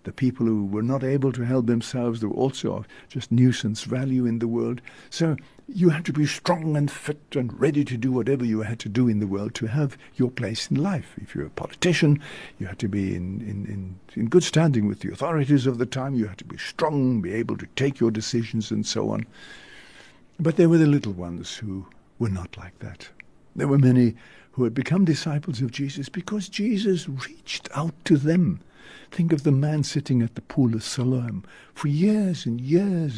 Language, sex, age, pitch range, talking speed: English, male, 60-79, 110-150 Hz, 215 wpm